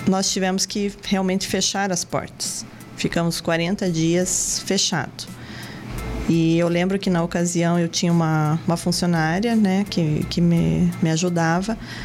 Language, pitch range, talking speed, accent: Portuguese, 170-200 Hz, 140 wpm, Brazilian